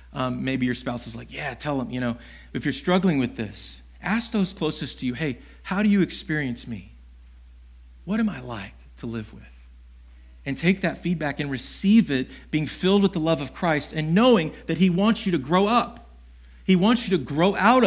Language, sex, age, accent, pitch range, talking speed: English, male, 40-59, American, 115-165 Hz, 210 wpm